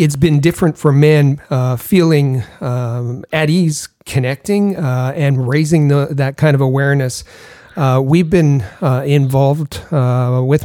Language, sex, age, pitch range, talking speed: English, male, 40-59, 135-160 Hz, 145 wpm